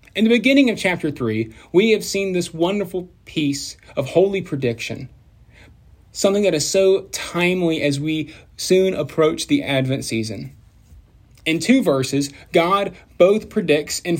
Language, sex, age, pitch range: English, male, 30-49, 120-190 Hz